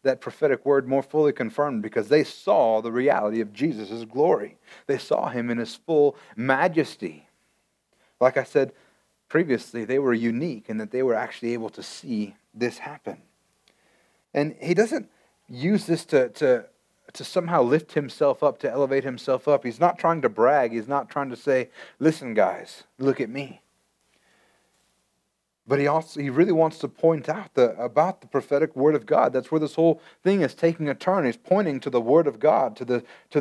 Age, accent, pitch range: 30-49, American, 125-160 Hz